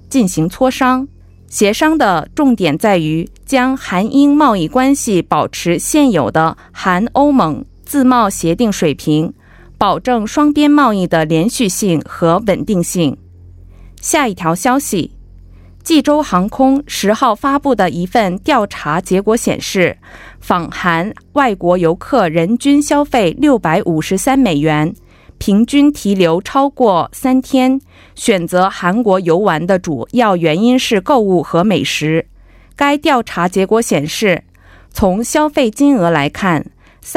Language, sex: Korean, female